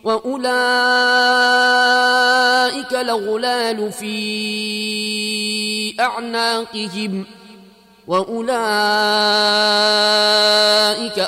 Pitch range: 215-250 Hz